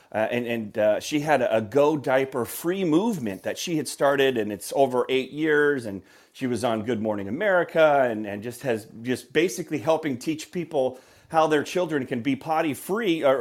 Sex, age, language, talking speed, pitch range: male, 30-49, English, 200 wpm, 125-165 Hz